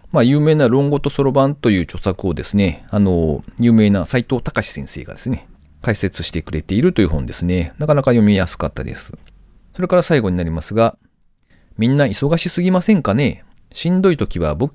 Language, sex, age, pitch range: Japanese, male, 40-59, 85-130 Hz